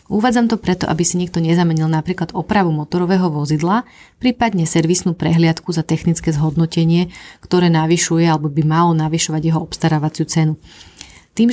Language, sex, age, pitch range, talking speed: Slovak, female, 30-49, 160-175 Hz, 140 wpm